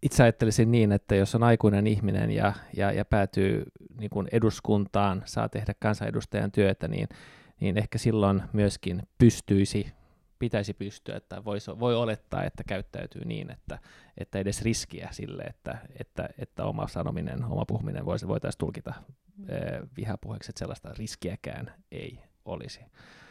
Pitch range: 100-115 Hz